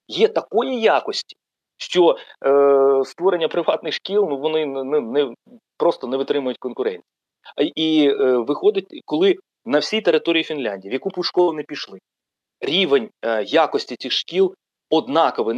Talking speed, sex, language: 145 wpm, male, Ukrainian